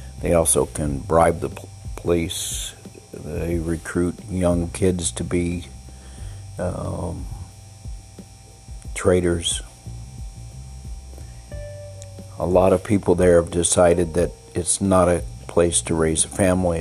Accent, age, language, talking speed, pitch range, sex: American, 60-79, English, 105 wpm, 85-95 Hz, male